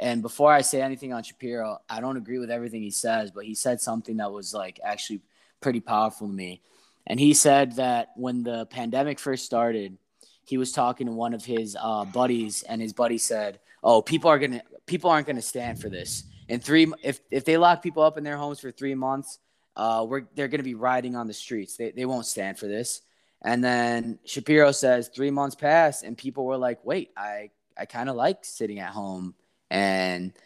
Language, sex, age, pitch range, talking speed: English, male, 10-29, 110-145 Hz, 215 wpm